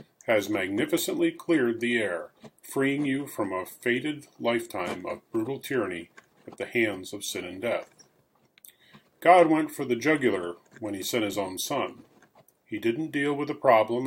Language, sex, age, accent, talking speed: English, male, 40-59, American, 160 wpm